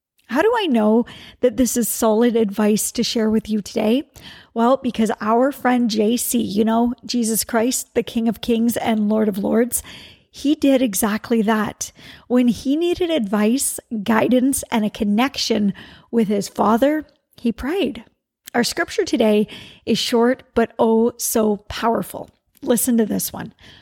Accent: American